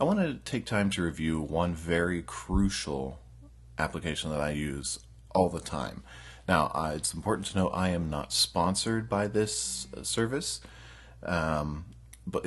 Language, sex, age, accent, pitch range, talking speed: English, male, 30-49, American, 70-95 Hz, 150 wpm